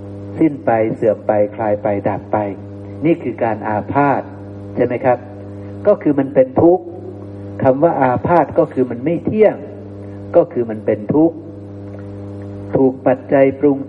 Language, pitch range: Thai, 100-135 Hz